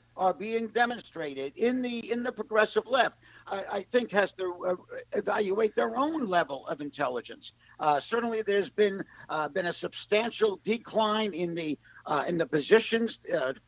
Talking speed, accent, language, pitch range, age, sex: 160 wpm, American, English, 180-225 Hz, 50-69, male